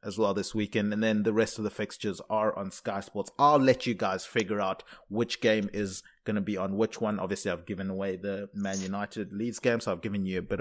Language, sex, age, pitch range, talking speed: English, male, 20-39, 105-125 Hz, 255 wpm